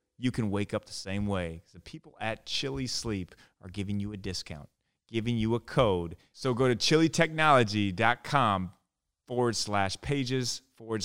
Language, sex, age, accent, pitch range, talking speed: English, male, 30-49, American, 95-125 Hz, 155 wpm